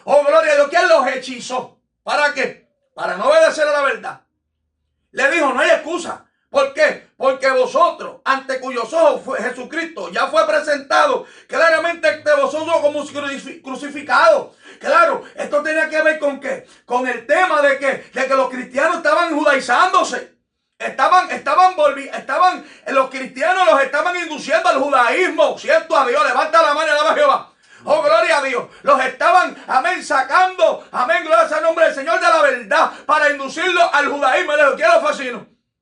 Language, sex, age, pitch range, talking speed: Spanish, male, 40-59, 270-325 Hz, 175 wpm